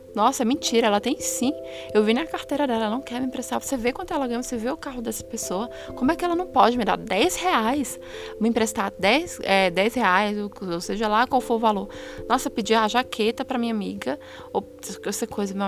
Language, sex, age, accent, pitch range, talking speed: Portuguese, female, 20-39, Brazilian, 205-275 Hz, 235 wpm